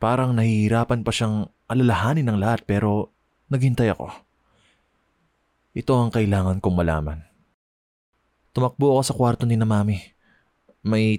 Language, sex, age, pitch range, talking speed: Filipino, male, 20-39, 95-125 Hz, 125 wpm